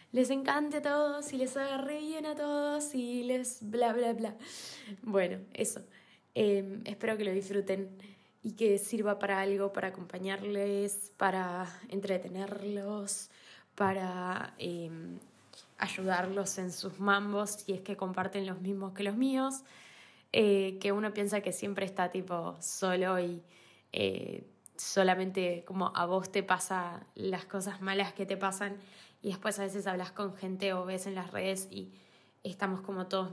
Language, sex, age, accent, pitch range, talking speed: English, female, 10-29, Argentinian, 185-225 Hz, 155 wpm